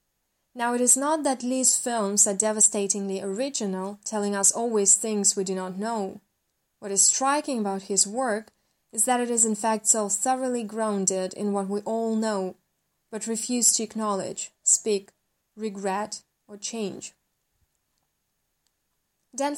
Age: 20-39